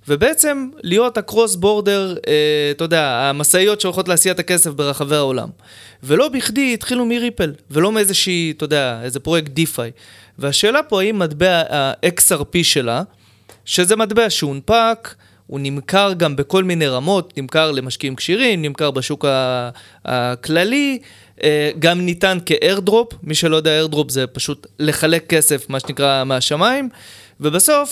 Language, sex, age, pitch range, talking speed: Hebrew, male, 20-39, 140-190 Hz, 130 wpm